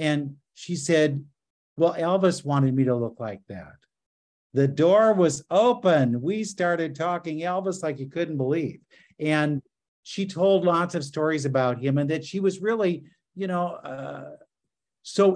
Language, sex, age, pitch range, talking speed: English, male, 50-69, 130-165 Hz, 155 wpm